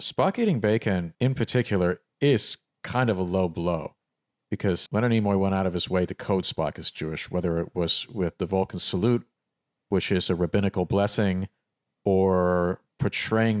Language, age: English, 50-69